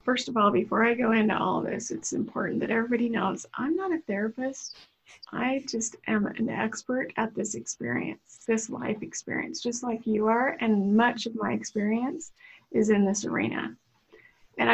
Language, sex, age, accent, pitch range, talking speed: English, female, 30-49, American, 215-260 Hz, 175 wpm